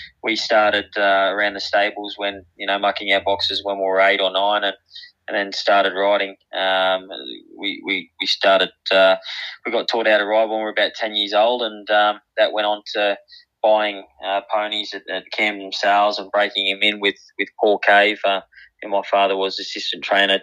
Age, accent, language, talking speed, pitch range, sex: 20-39, Australian, English, 210 wpm, 95-105 Hz, male